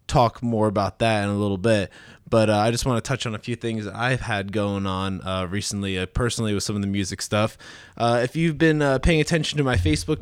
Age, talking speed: 20-39, 250 wpm